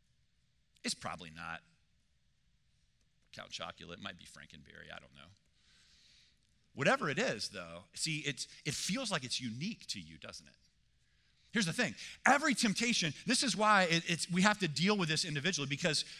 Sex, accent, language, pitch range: male, American, English, 140-200 Hz